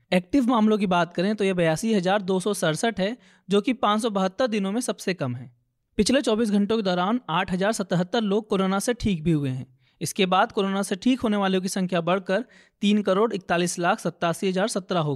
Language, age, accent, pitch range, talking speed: Hindi, 20-39, native, 175-215 Hz, 180 wpm